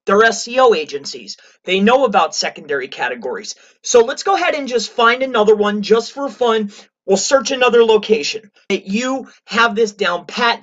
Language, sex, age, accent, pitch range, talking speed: English, male, 30-49, American, 205-260 Hz, 170 wpm